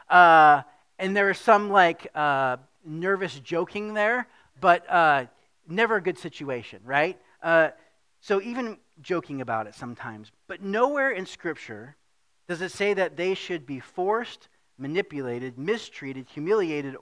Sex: male